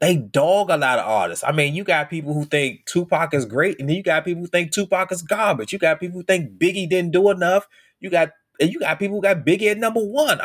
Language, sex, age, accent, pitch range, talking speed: English, male, 30-49, American, 130-180 Hz, 270 wpm